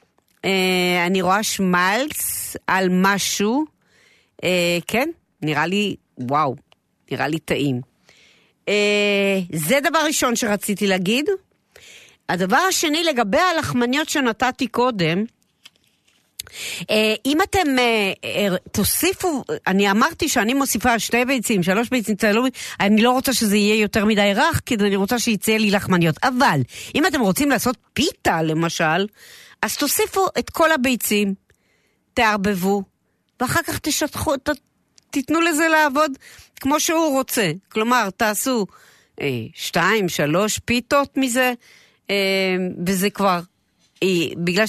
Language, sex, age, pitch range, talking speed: Hebrew, female, 50-69, 190-270 Hz, 120 wpm